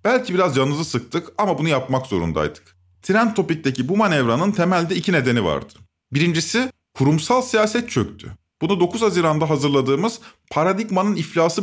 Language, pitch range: Turkish, 145-210 Hz